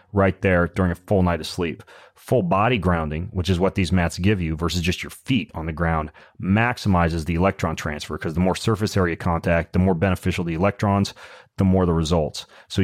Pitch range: 90-105 Hz